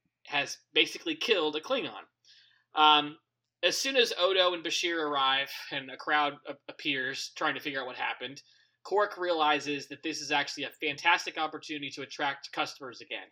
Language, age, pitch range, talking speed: English, 20-39, 140-175 Hz, 160 wpm